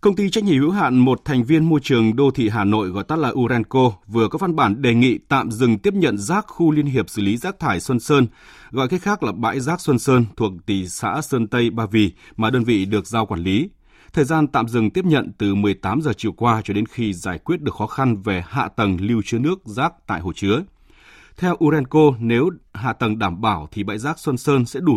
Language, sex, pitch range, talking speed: Vietnamese, male, 105-150 Hz, 250 wpm